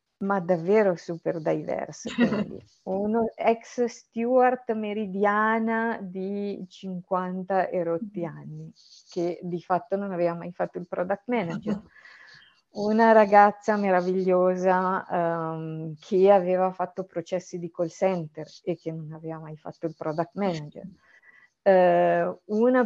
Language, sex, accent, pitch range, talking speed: Italian, female, native, 170-210 Hz, 115 wpm